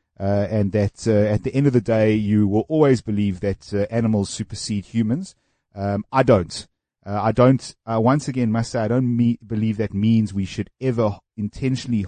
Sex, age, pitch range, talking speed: male, 30-49, 105-130 Hz, 200 wpm